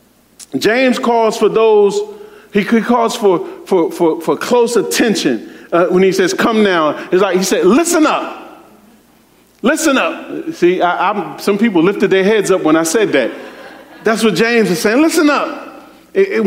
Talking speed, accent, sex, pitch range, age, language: 175 wpm, American, male, 190-275 Hz, 40-59, English